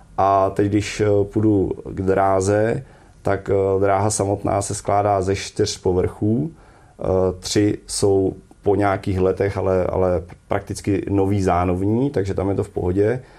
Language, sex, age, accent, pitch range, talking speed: Czech, male, 30-49, native, 95-100 Hz, 135 wpm